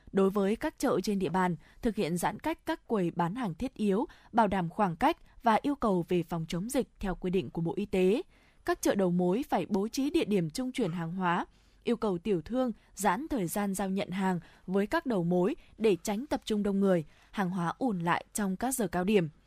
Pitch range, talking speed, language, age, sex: 185-250 Hz, 235 wpm, Vietnamese, 20-39, female